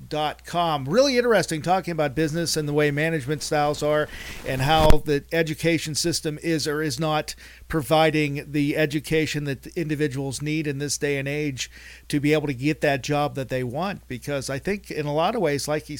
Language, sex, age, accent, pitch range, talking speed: English, male, 50-69, American, 130-155 Hz, 205 wpm